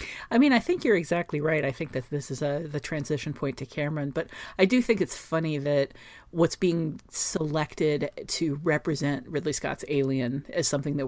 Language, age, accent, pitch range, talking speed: English, 40-59, American, 140-180 Hz, 190 wpm